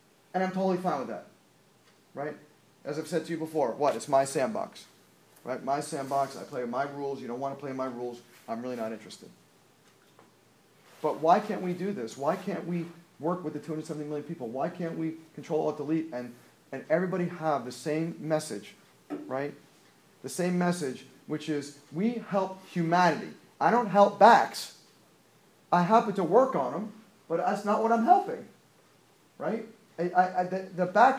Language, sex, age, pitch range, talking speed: English, male, 40-59, 150-195 Hz, 180 wpm